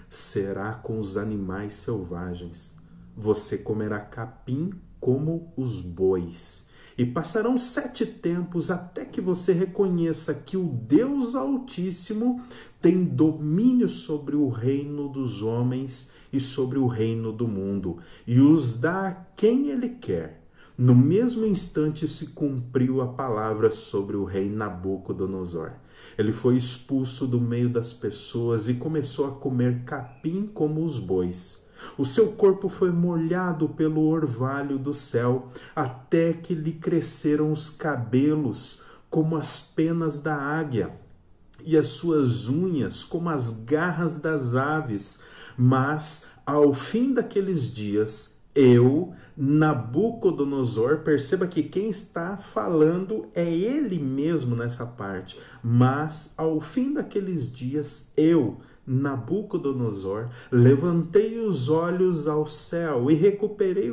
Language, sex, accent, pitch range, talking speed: Portuguese, male, Brazilian, 120-170 Hz, 120 wpm